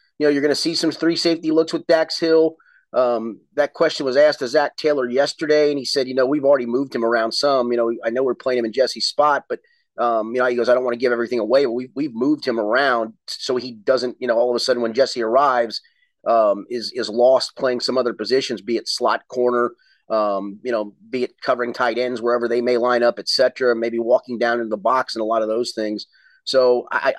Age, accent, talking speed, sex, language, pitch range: 30-49, American, 255 wpm, male, English, 120-185 Hz